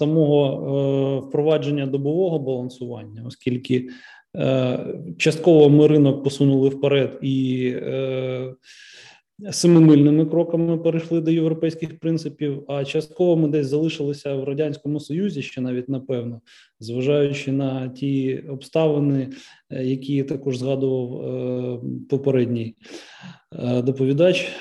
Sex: male